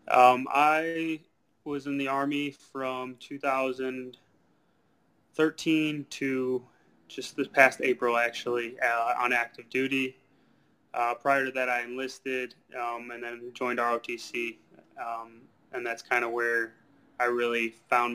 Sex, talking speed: male, 125 wpm